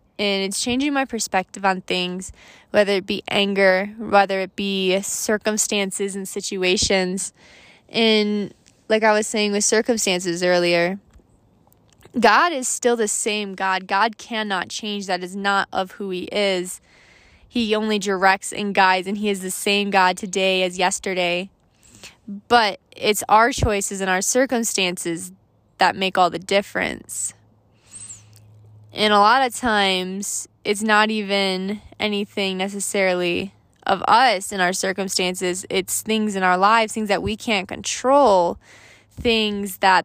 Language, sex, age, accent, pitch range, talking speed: English, female, 20-39, American, 185-210 Hz, 140 wpm